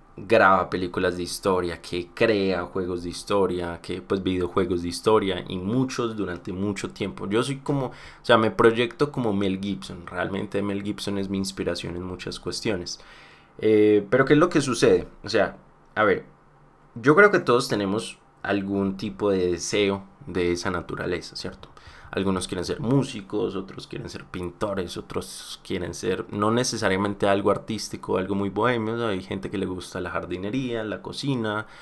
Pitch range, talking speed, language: 95-115 Hz, 170 wpm, Spanish